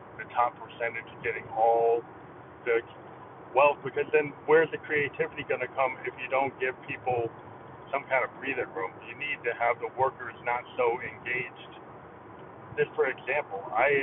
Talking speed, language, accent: 165 wpm, English, American